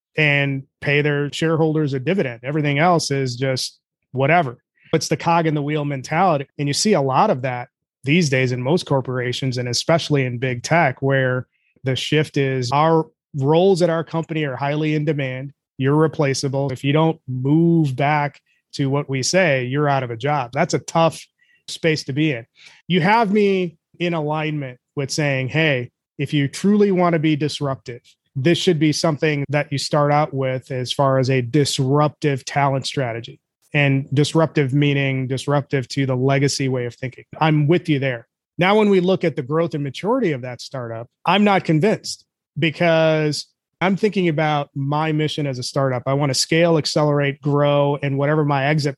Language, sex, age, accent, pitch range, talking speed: English, male, 30-49, American, 135-160 Hz, 185 wpm